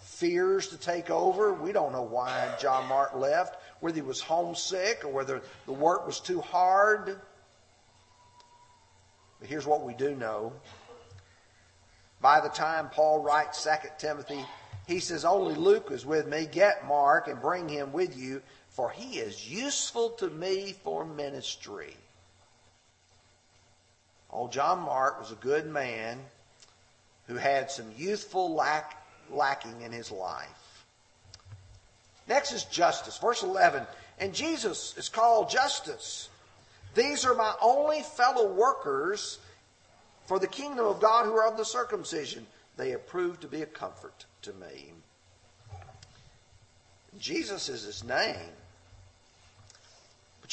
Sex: male